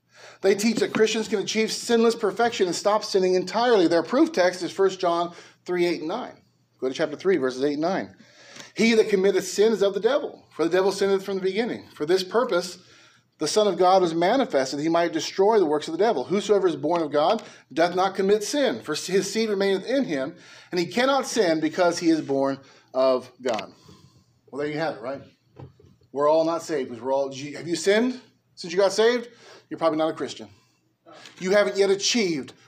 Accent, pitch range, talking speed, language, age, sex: American, 175-235 Hz, 210 wpm, English, 30-49, male